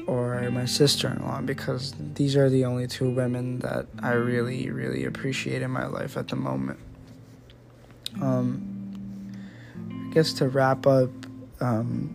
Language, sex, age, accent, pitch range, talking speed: English, male, 20-39, American, 120-135 Hz, 140 wpm